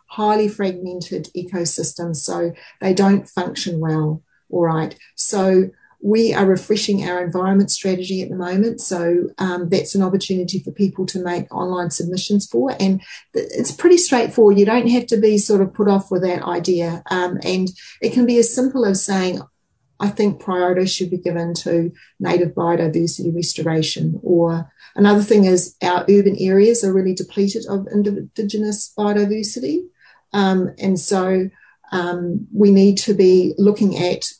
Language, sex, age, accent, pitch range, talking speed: English, female, 40-59, Australian, 180-210 Hz, 155 wpm